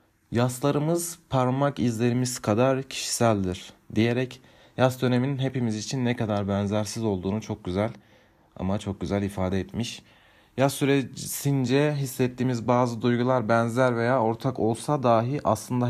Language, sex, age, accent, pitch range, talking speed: Turkish, male, 40-59, native, 110-135 Hz, 120 wpm